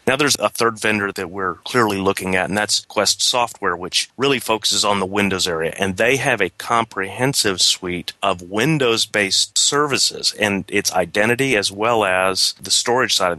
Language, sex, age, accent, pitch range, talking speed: English, male, 30-49, American, 95-115 Hz, 185 wpm